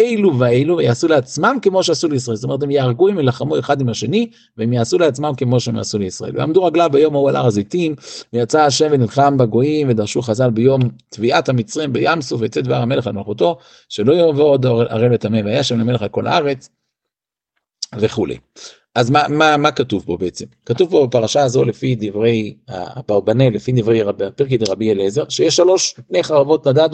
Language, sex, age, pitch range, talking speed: Hebrew, male, 50-69, 120-150 Hz, 180 wpm